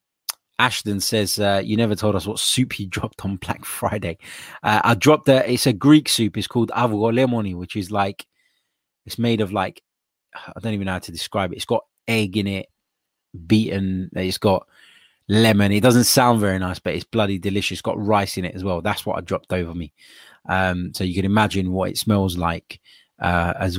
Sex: male